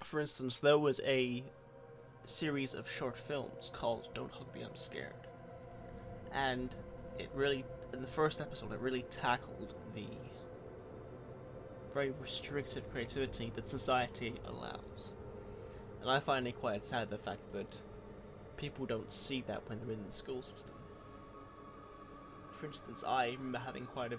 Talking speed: 145 wpm